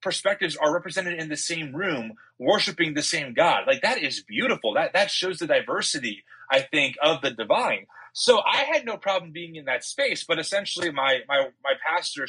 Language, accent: English, American